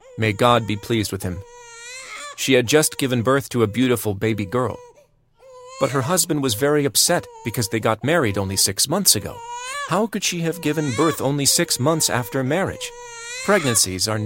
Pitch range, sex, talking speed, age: 105-155 Hz, male, 180 wpm, 40-59